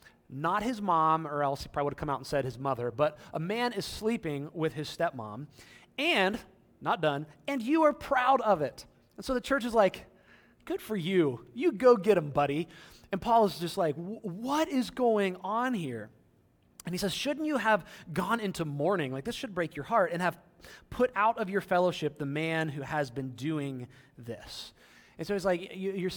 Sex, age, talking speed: male, 20-39, 205 wpm